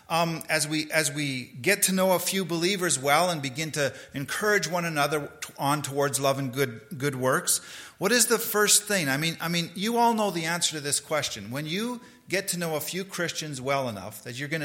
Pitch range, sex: 115-170 Hz, male